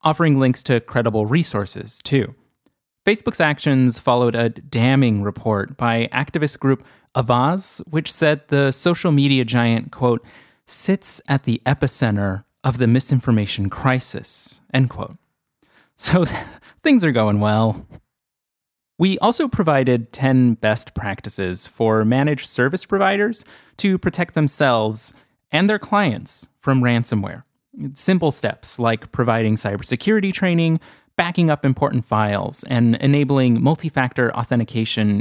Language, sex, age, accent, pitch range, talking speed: English, male, 30-49, American, 115-155 Hz, 120 wpm